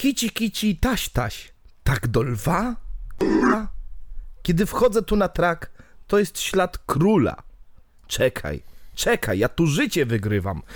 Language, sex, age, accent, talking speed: Polish, male, 30-49, native, 125 wpm